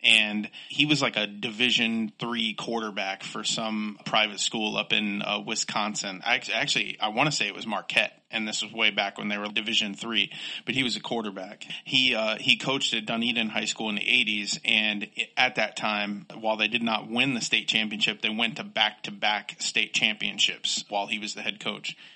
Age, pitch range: 30-49, 110-120 Hz